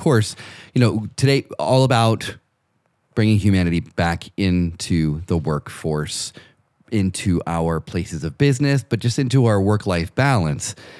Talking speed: 125 wpm